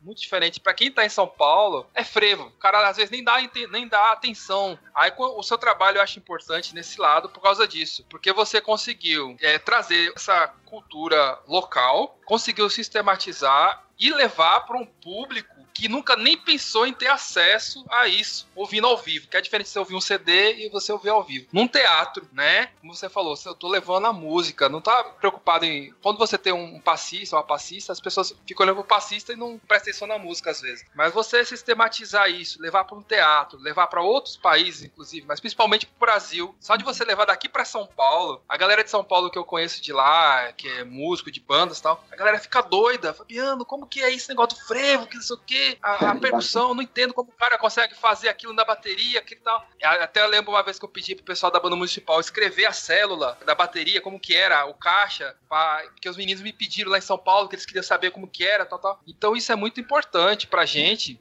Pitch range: 180-230 Hz